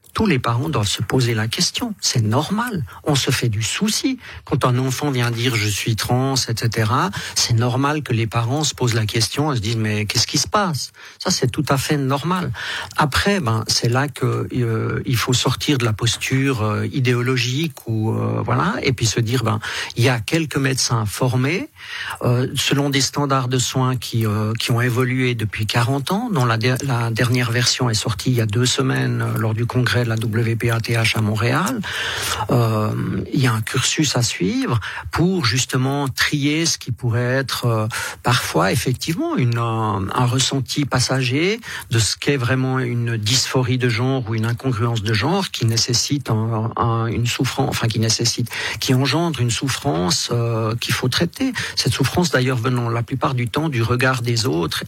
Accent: French